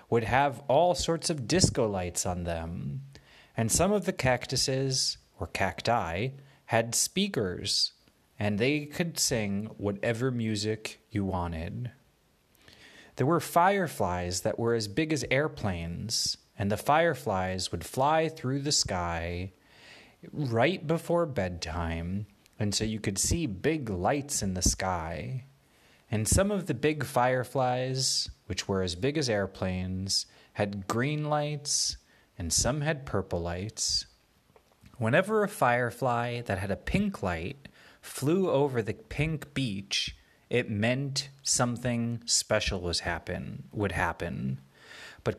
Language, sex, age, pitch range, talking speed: English, male, 30-49, 95-145 Hz, 130 wpm